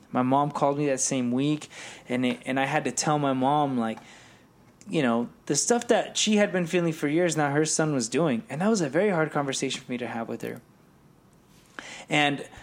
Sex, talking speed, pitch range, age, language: male, 225 wpm, 125-155 Hz, 20-39, English